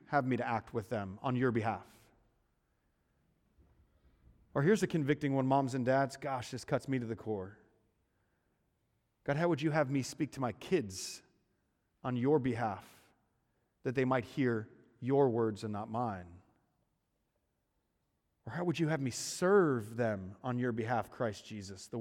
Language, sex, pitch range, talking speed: English, male, 110-145 Hz, 165 wpm